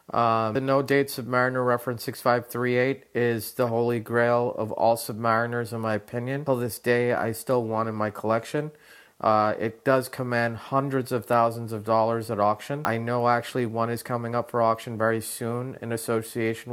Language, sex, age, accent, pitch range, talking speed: English, male, 40-59, American, 115-130 Hz, 190 wpm